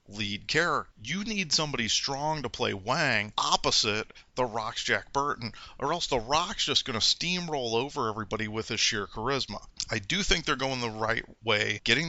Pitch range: 110-135 Hz